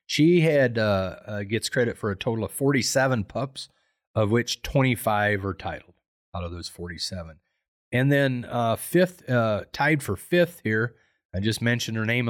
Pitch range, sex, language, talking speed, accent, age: 95-120 Hz, male, English, 170 wpm, American, 40-59